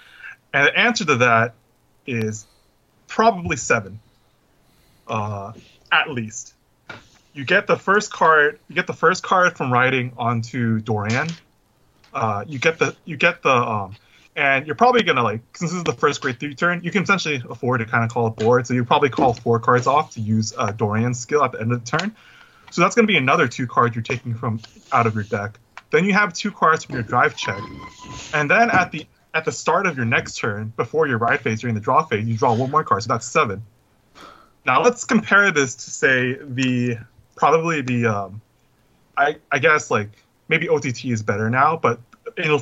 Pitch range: 115-160 Hz